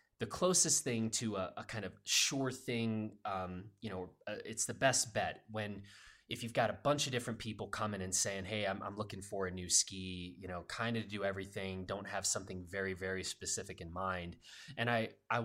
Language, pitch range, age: English, 95-115 Hz, 20-39